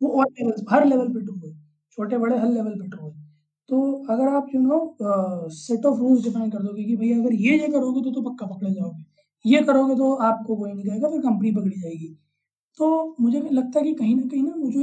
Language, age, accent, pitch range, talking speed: Hindi, 20-39, native, 195-245 Hz, 230 wpm